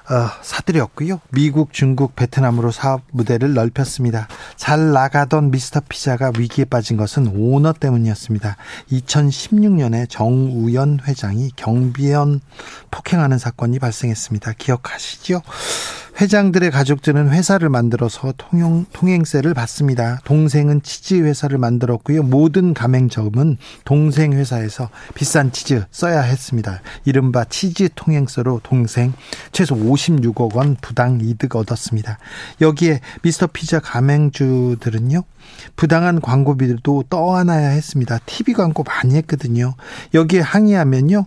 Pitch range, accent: 125-155 Hz, native